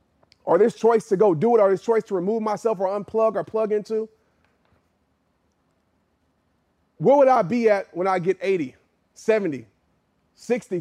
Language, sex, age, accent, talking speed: English, male, 30-49, American, 160 wpm